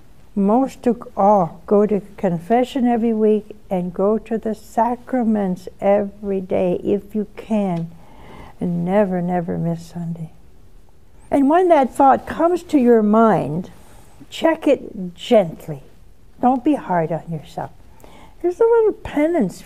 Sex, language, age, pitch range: female, English, 60-79, 180-230 Hz